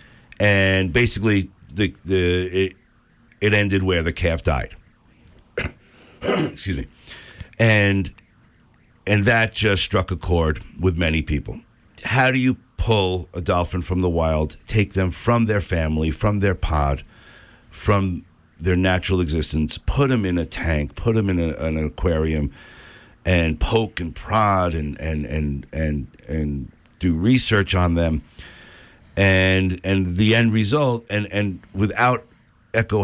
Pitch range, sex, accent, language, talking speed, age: 90-110 Hz, male, American, English, 140 wpm, 60-79